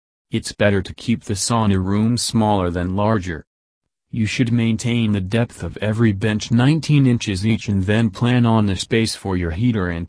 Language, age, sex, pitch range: English, 40-59, male, 95-115 Hz